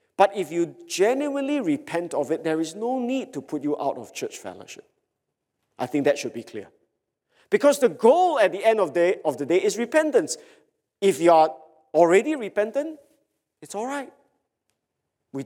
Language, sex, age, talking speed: English, male, 50-69, 175 wpm